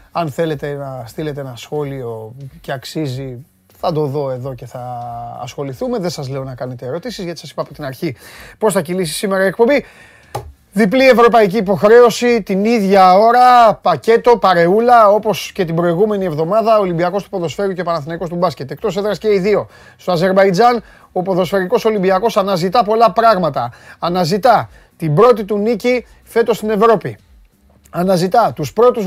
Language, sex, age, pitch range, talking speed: Greek, male, 30-49, 160-220 Hz, 160 wpm